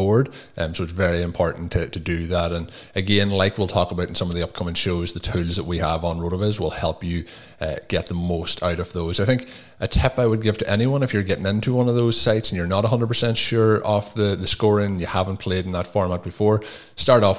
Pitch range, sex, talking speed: 85-100 Hz, male, 255 wpm